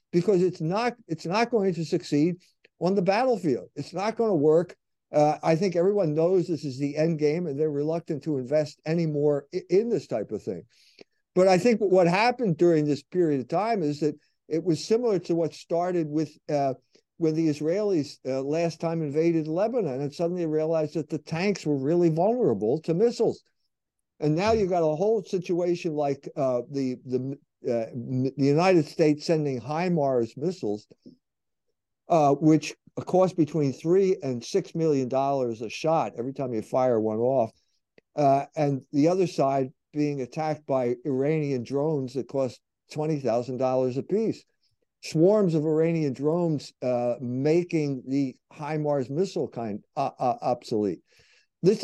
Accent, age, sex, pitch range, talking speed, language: American, 50-69, male, 140-175 Hz, 165 wpm, English